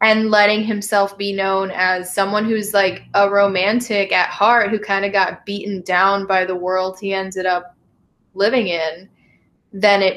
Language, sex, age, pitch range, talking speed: English, female, 10-29, 190-225 Hz, 170 wpm